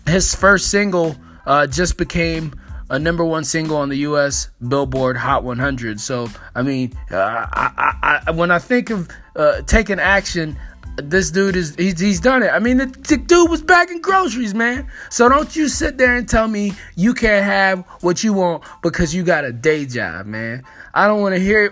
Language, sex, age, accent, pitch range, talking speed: English, male, 20-39, American, 150-225 Hz, 200 wpm